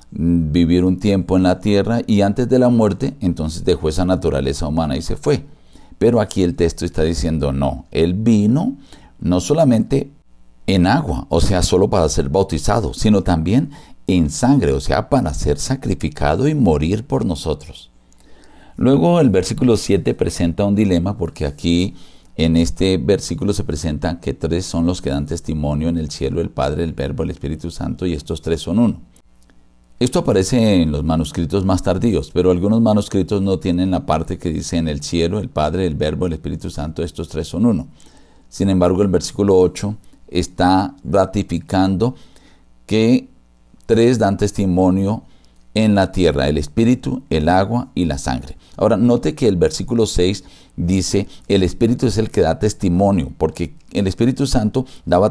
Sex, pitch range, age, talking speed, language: male, 80-100 Hz, 50-69, 170 wpm, Spanish